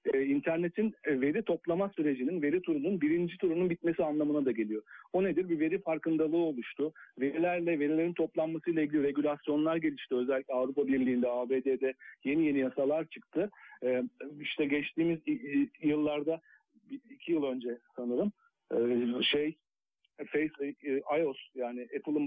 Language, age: Turkish, 50-69